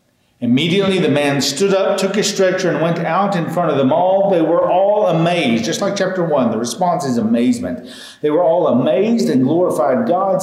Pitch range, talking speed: 140-195 Hz, 200 wpm